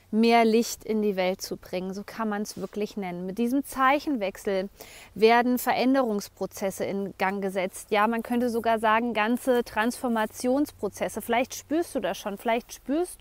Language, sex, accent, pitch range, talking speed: German, female, German, 210-245 Hz, 160 wpm